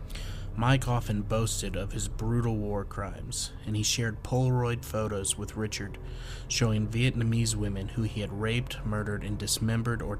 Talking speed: 155 wpm